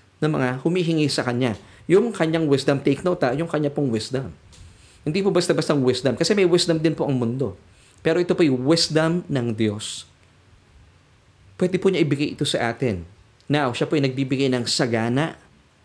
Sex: male